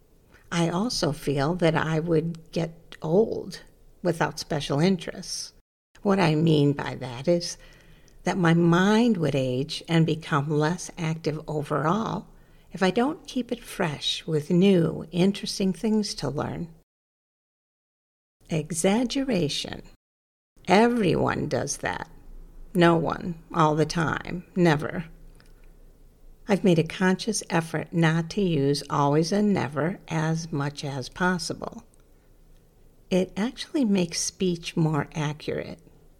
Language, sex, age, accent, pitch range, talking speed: English, female, 50-69, American, 150-185 Hz, 115 wpm